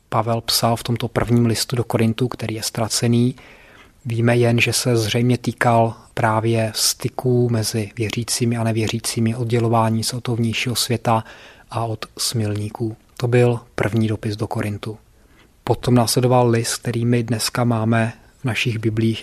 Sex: male